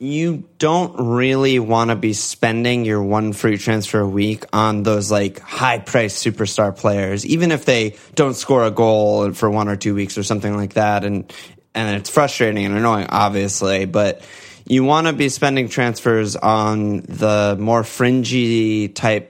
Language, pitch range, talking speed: English, 105-120 Hz, 165 wpm